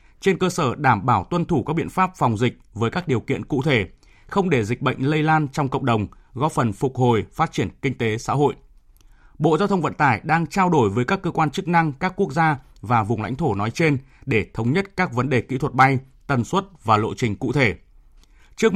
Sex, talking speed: male, 245 wpm